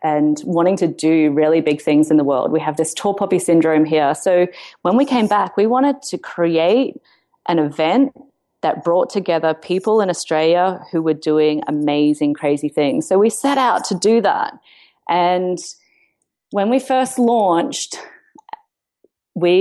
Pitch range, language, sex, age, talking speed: 170-250 Hz, English, female, 30-49, 160 wpm